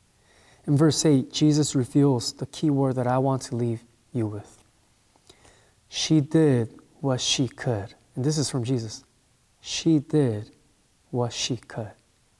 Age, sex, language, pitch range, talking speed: 20-39, male, English, 115-150 Hz, 145 wpm